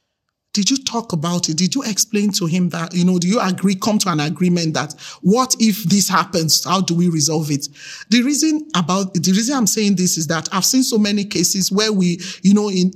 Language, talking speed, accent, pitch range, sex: English, 230 wpm, Nigerian, 175-220 Hz, male